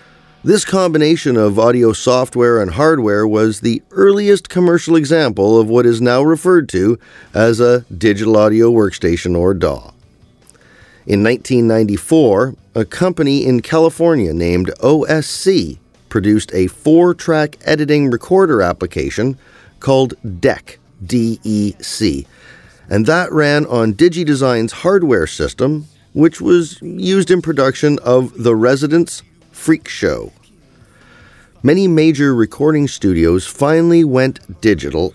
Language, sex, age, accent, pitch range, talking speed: English, male, 40-59, American, 105-150 Hz, 115 wpm